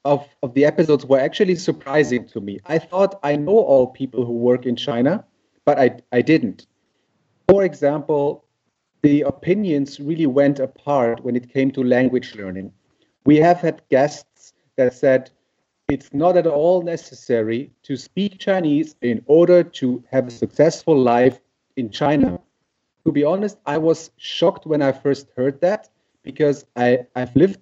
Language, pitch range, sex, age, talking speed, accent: English, 120-150 Hz, male, 40-59, 160 wpm, German